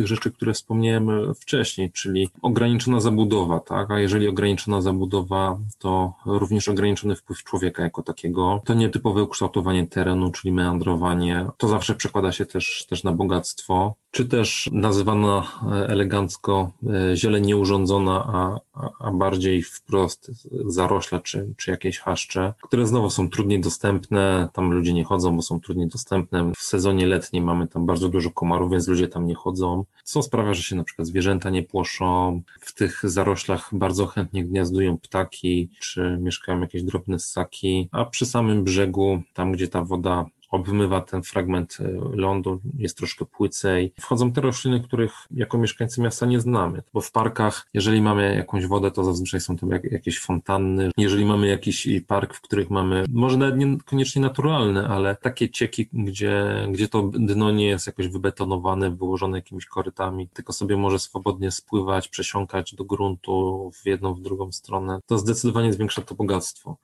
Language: Polish